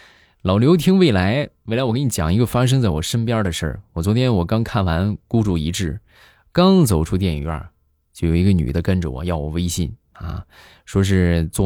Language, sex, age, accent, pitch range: Chinese, male, 20-39, native, 85-110 Hz